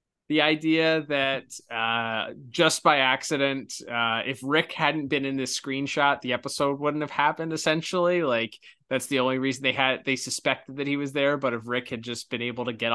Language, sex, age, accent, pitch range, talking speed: English, male, 20-39, American, 120-140 Hz, 200 wpm